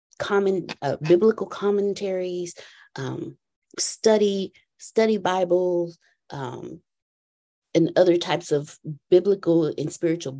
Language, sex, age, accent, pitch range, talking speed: English, female, 30-49, American, 150-185 Hz, 90 wpm